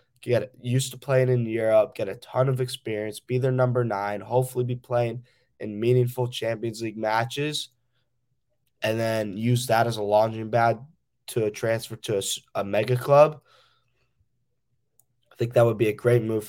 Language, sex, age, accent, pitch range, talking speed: English, male, 10-29, American, 105-125 Hz, 165 wpm